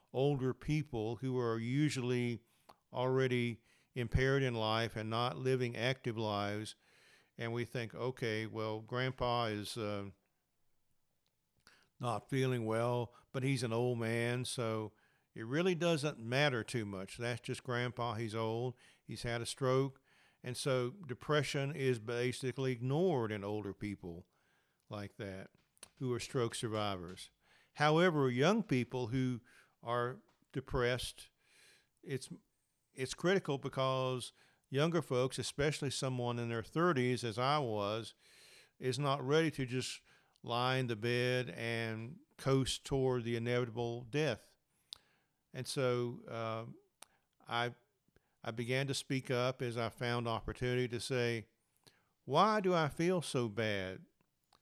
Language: English